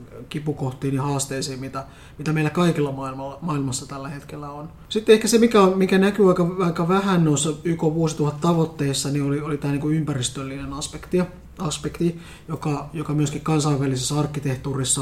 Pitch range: 135-155 Hz